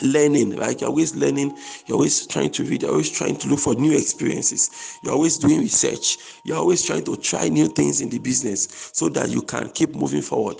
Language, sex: English, male